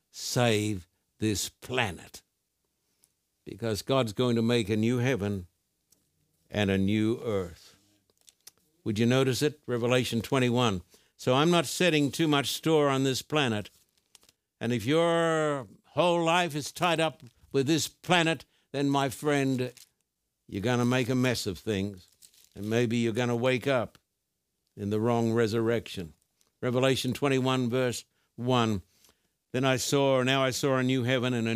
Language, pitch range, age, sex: English, 110-145 Hz, 60-79, male